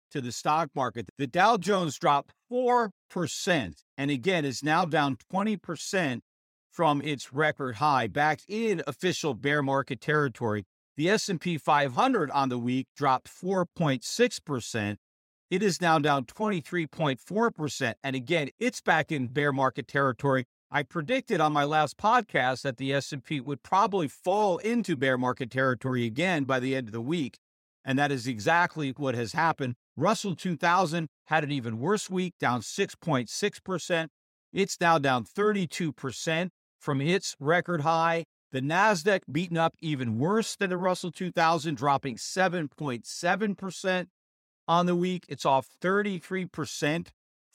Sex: male